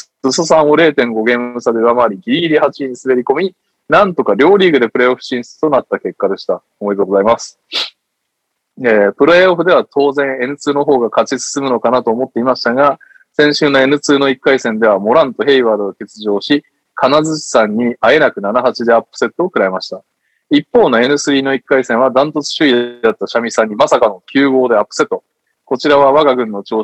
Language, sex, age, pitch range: Japanese, male, 20-39, 115-145 Hz